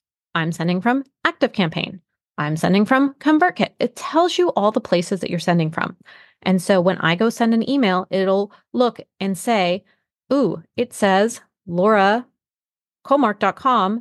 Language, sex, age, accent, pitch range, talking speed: English, female, 30-49, American, 185-260 Hz, 150 wpm